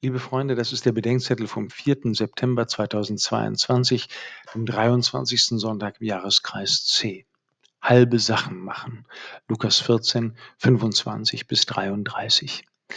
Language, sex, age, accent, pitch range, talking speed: German, male, 50-69, German, 115-135 Hz, 110 wpm